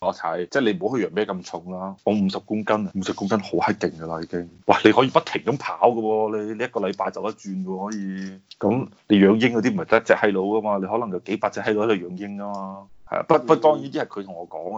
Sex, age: male, 30-49